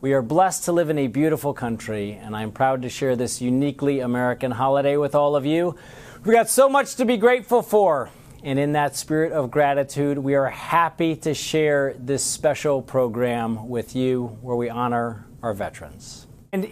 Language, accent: English, American